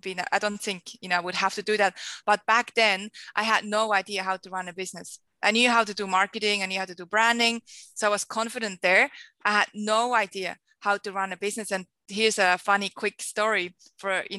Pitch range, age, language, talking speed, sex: 185-220 Hz, 20-39, English, 240 wpm, female